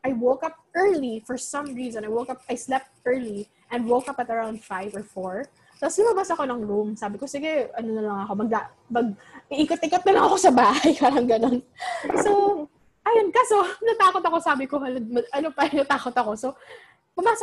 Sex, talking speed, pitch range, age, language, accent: female, 200 wpm, 230-315 Hz, 20-39, English, Filipino